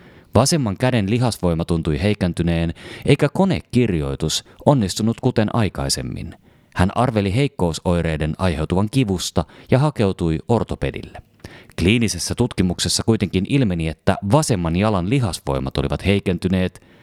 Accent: native